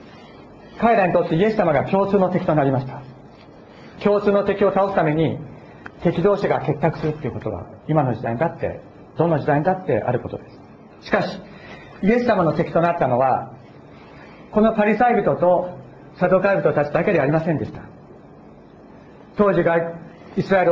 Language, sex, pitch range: Japanese, male, 145-195 Hz